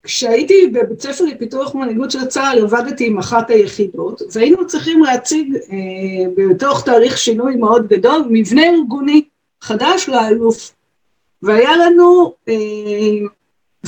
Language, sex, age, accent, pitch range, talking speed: Hebrew, female, 50-69, native, 225-325 Hz, 115 wpm